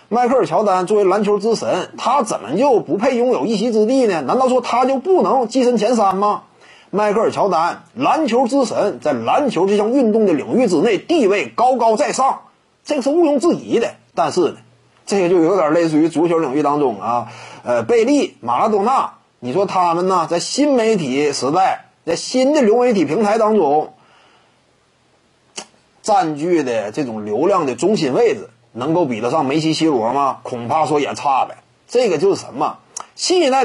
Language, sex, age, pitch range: Chinese, male, 30-49, 175-260 Hz